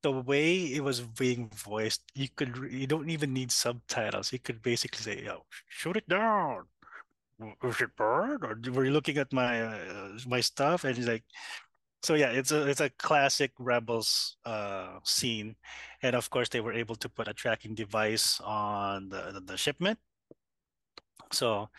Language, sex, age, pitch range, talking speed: English, male, 20-39, 110-130 Hz, 165 wpm